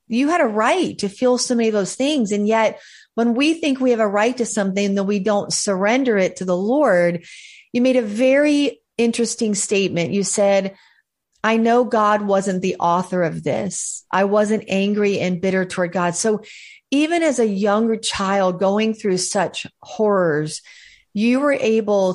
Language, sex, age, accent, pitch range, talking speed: English, female, 40-59, American, 185-225 Hz, 180 wpm